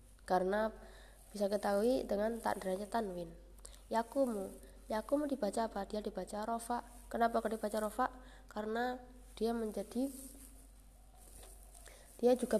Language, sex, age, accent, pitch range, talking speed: Indonesian, female, 20-39, native, 205-250 Hz, 105 wpm